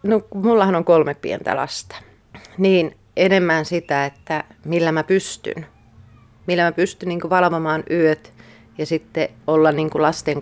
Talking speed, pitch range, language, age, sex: 140 wpm, 140-175 Hz, Finnish, 30-49, female